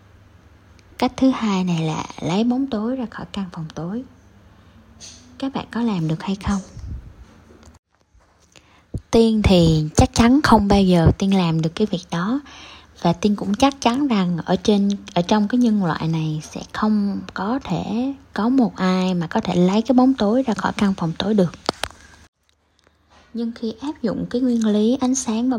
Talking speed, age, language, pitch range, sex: 180 wpm, 10-29, Vietnamese, 170-235 Hz, female